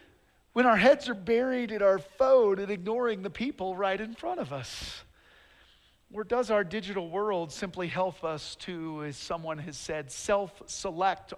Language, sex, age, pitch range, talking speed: English, male, 50-69, 155-210 Hz, 165 wpm